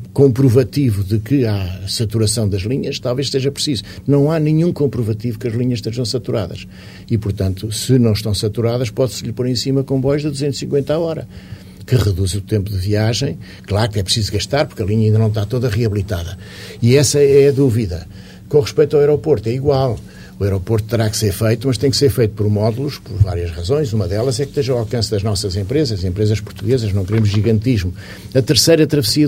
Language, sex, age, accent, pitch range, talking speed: Portuguese, male, 50-69, Portuguese, 105-135 Hz, 205 wpm